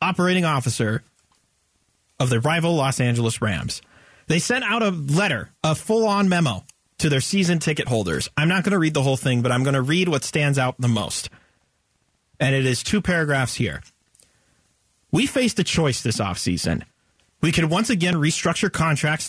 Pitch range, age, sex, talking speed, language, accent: 120-165 Hz, 30-49, male, 180 wpm, English, American